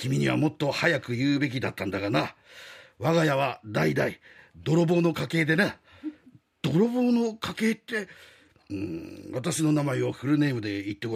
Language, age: Japanese, 50-69